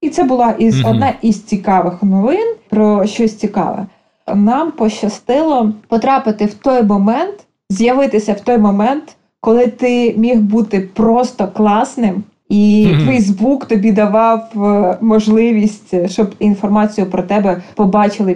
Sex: female